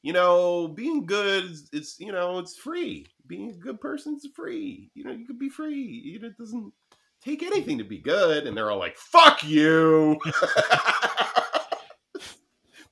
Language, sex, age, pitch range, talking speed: English, male, 30-49, 90-150 Hz, 165 wpm